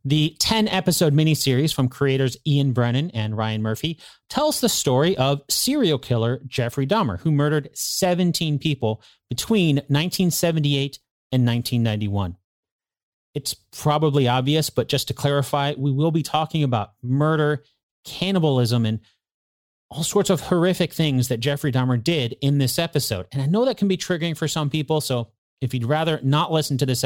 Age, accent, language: 30-49, American, English